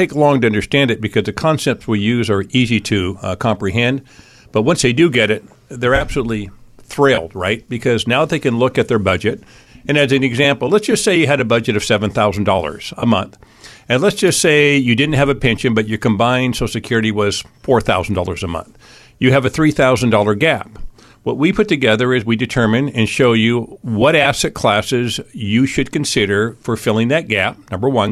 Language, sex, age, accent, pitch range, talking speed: English, male, 50-69, American, 110-140 Hz, 200 wpm